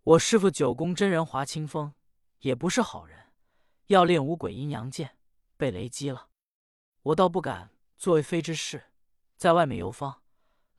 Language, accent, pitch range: Chinese, native, 130-195 Hz